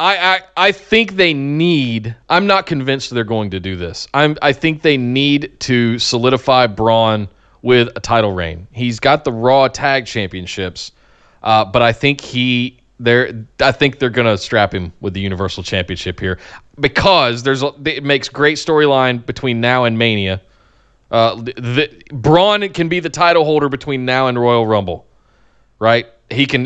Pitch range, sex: 115-150 Hz, male